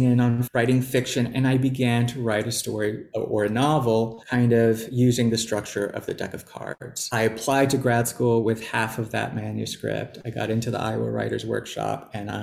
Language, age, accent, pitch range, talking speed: English, 30-49, American, 115-140 Hz, 205 wpm